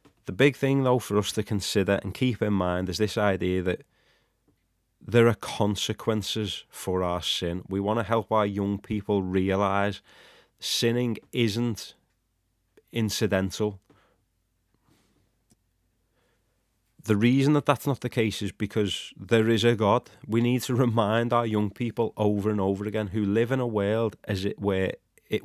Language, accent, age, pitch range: English, British, 30-49, 100-115 Hz